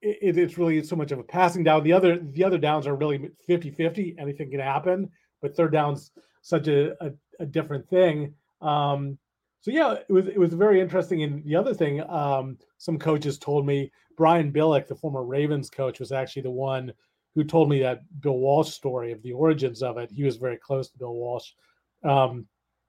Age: 30-49